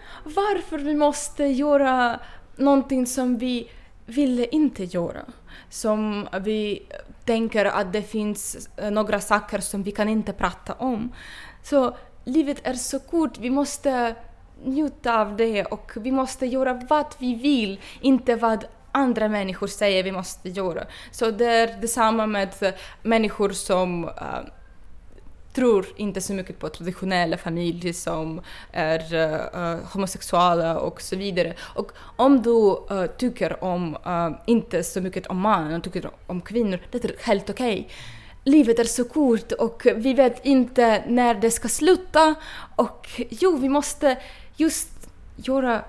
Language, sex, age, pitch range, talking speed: Swedish, female, 20-39, 185-255 Hz, 145 wpm